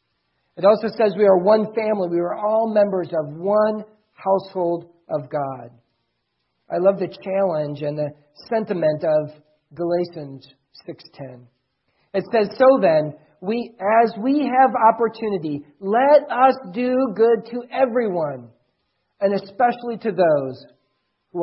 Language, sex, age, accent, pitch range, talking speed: English, male, 40-59, American, 155-245 Hz, 130 wpm